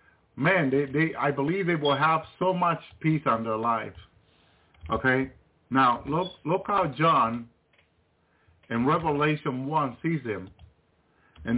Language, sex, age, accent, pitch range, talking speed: English, male, 50-69, American, 100-155 Hz, 135 wpm